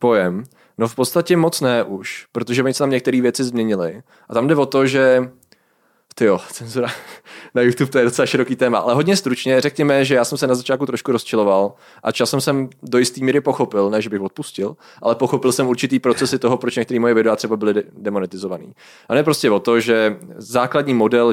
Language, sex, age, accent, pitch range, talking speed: Czech, male, 20-39, native, 110-130 Hz, 205 wpm